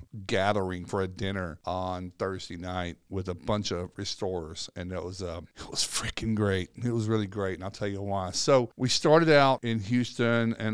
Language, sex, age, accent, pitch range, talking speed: English, male, 50-69, American, 100-120 Hz, 205 wpm